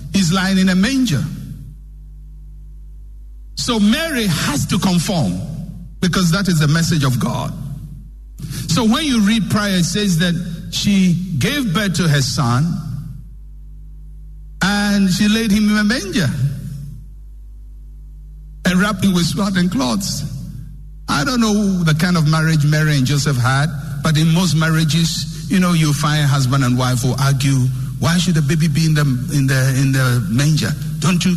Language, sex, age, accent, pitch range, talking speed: English, male, 60-79, Nigerian, 150-200 Hz, 160 wpm